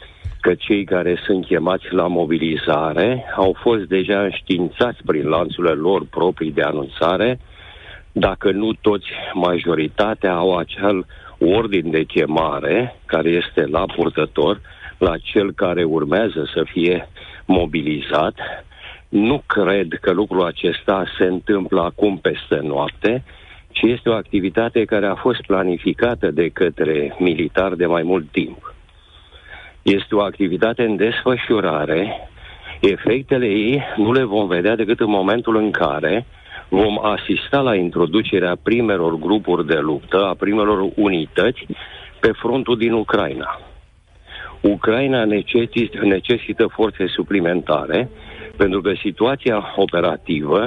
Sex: male